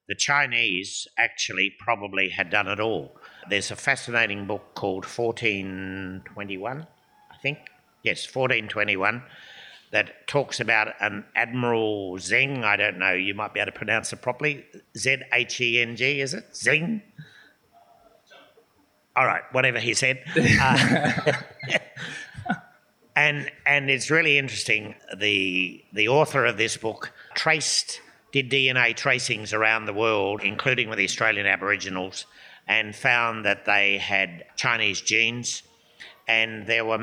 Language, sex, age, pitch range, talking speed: English, male, 60-79, 100-130 Hz, 125 wpm